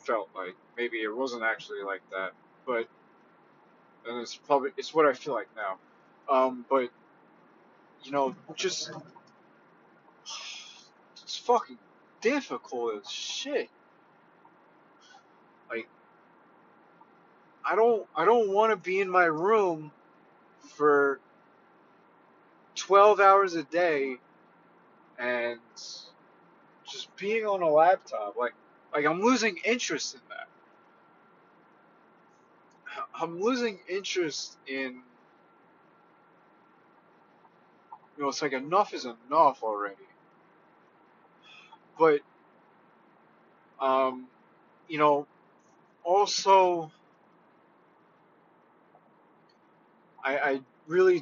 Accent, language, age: American, English, 30-49